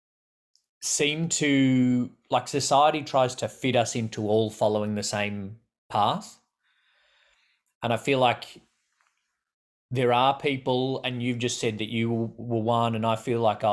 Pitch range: 105-125 Hz